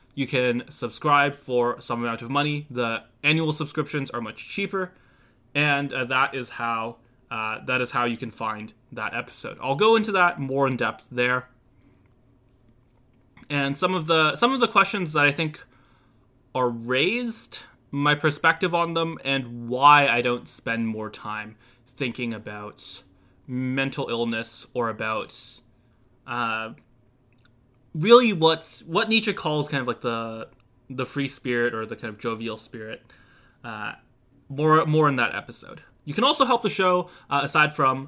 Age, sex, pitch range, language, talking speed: 20-39, male, 115-150 Hz, English, 160 wpm